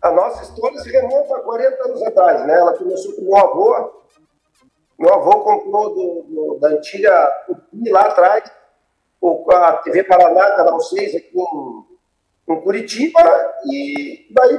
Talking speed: 165 wpm